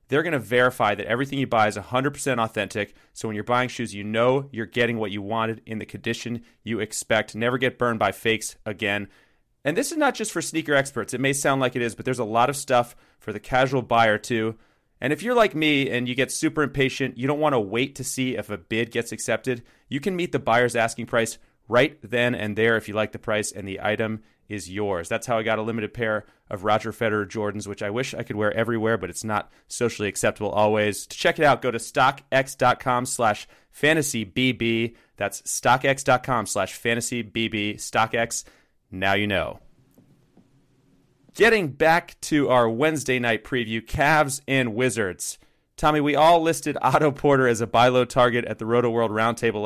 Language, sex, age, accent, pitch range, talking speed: English, male, 30-49, American, 110-130 Hz, 200 wpm